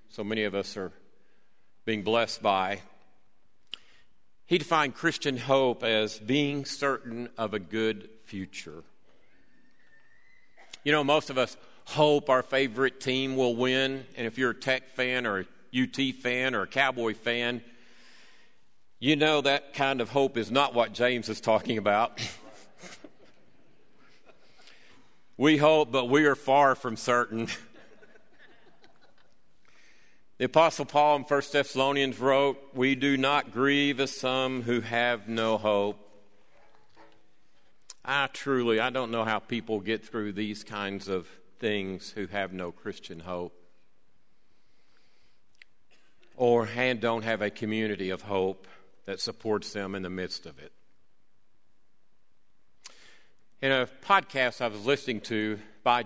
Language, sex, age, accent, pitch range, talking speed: English, male, 50-69, American, 105-135 Hz, 130 wpm